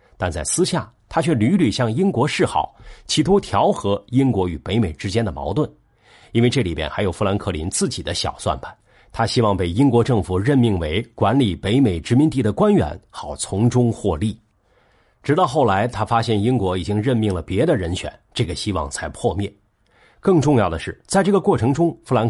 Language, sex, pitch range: Chinese, male, 95-130 Hz